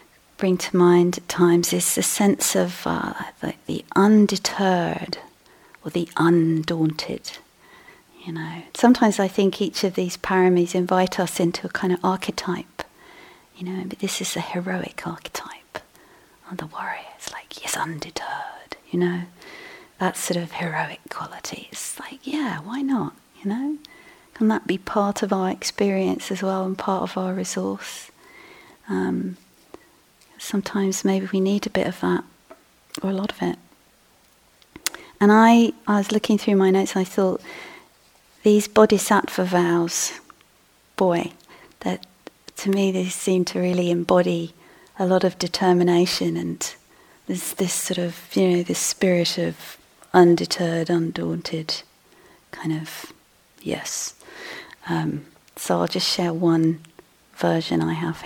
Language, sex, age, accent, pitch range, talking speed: English, female, 40-59, British, 170-205 Hz, 140 wpm